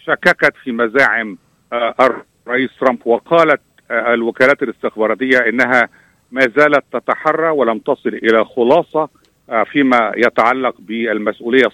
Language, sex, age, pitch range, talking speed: Arabic, male, 50-69, 130-180 Hz, 95 wpm